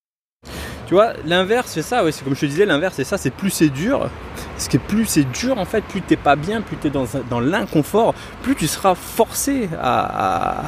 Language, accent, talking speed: French, French, 240 wpm